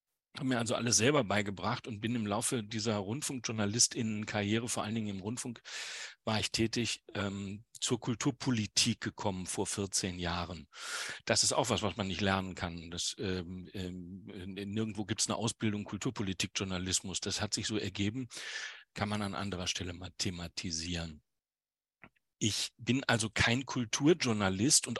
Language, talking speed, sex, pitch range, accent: German, 155 wpm, male, 100-125 Hz, German